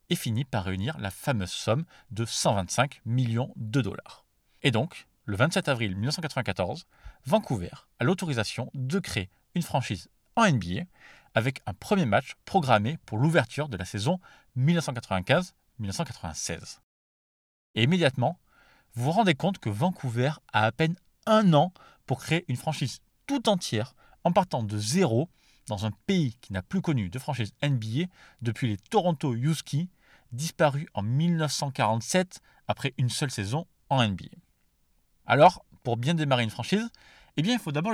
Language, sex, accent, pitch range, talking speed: French, male, French, 115-165 Hz, 145 wpm